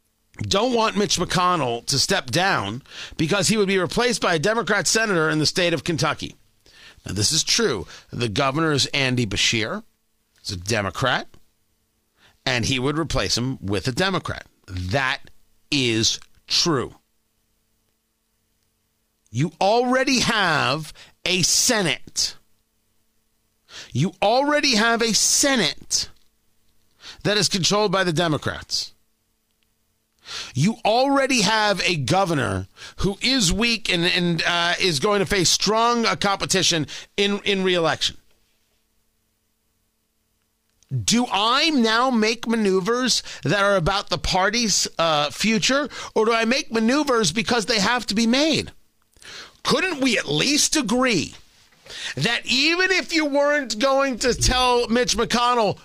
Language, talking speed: English, 130 wpm